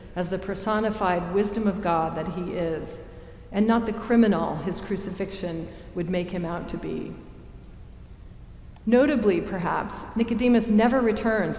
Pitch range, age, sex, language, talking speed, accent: 180-225 Hz, 40-59, female, English, 135 wpm, American